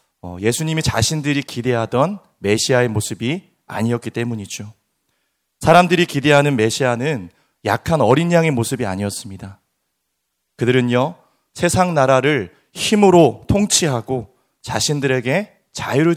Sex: male